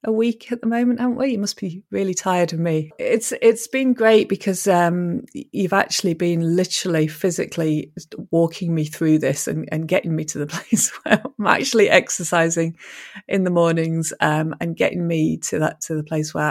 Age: 30-49